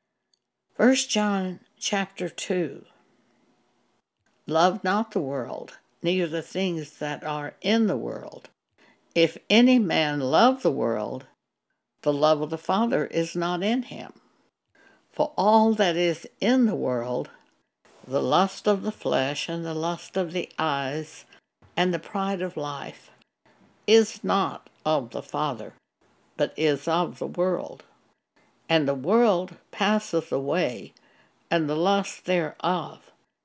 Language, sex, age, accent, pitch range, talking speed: English, female, 60-79, American, 165-215 Hz, 130 wpm